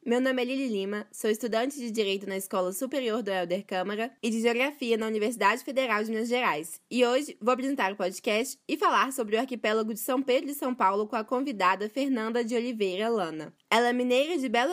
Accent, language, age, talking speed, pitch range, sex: Brazilian, Portuguese, 20-39, 215 wpm, 210-260 Hz, female